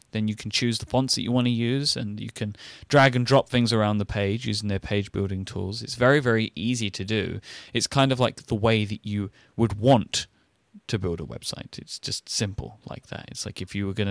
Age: 30-49